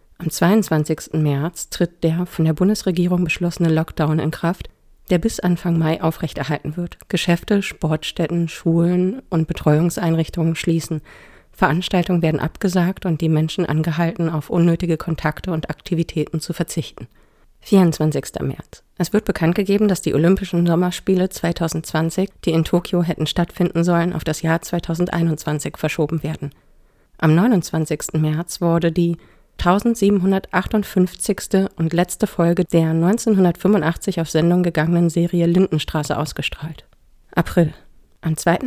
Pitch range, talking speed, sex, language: 160-180 Hz, 125 wpm, female, German